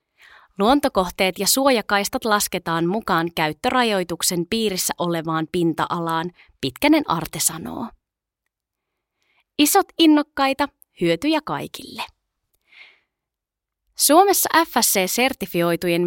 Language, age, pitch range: Finnish, 20-39, 170-255 Hz